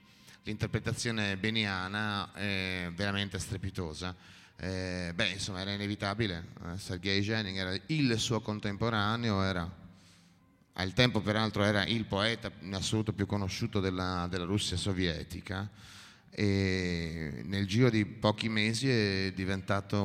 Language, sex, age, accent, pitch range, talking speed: Italian, male, 30-49, native, 95-120 Hz, 115 wpm